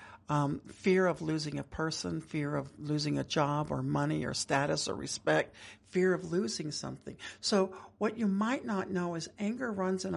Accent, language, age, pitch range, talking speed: American, English, 60-79, 145-200 Hz, 185 wpm